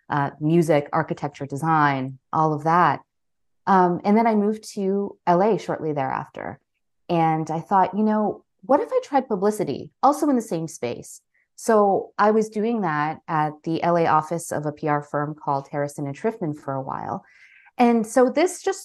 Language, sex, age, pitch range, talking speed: English, female, 30-49, 150-210 Hz, 175 wpm